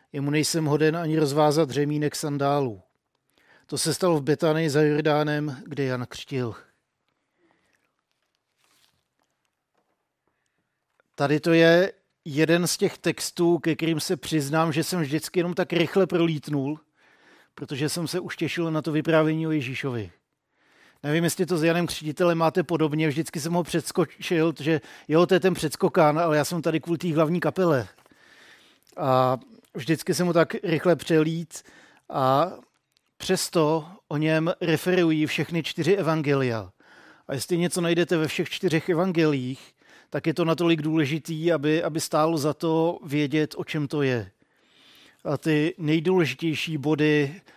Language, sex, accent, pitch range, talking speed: Czech, male, native, 145-170 Hz, 140 wpm